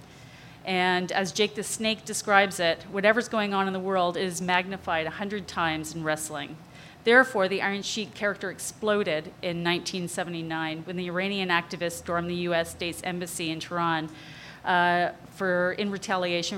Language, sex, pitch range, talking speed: English, female, 165-195 Hz, 150 wpm